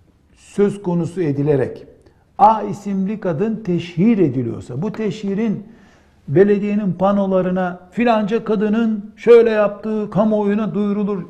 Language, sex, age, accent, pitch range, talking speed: Turkish, male, 60-79, native, 150-205 Hz, 95 wpm